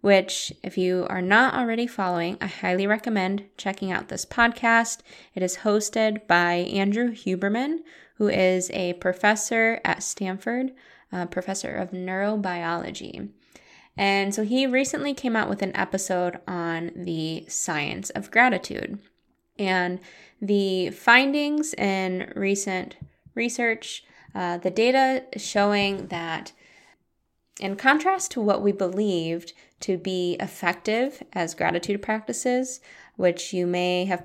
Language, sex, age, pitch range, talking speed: English, female, 10-29, 180-220 Hz, 125 wpm